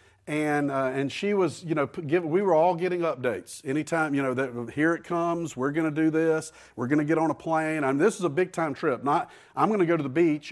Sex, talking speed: male, 275 wpm